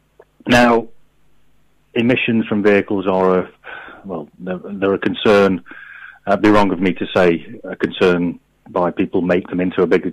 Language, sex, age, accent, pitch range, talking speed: English, male, 30-49, British, 95-105 Hz, 160 wpm